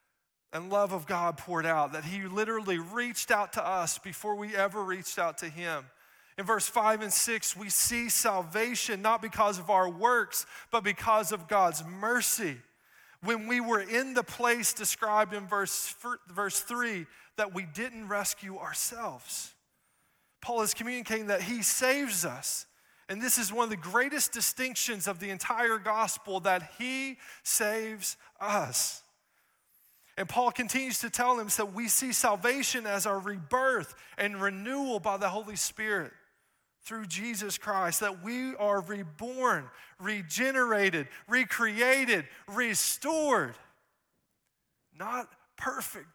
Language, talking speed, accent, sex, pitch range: English, 140 wpm, American, male, 195-235 Hz